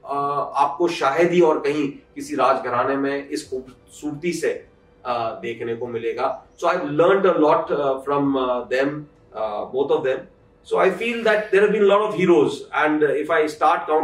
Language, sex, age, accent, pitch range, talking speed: Hindi, male, 30-49, native, 135-210 Hz, 80 wpm